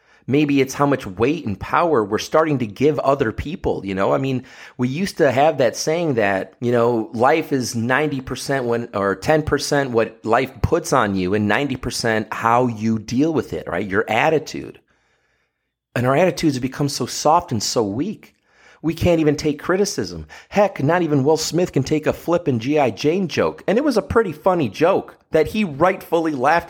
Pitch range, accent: 115-160 Hz, American